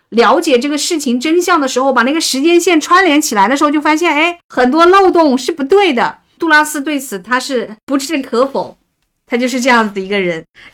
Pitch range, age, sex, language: 210-285 Hz, 50-69, female, Chinese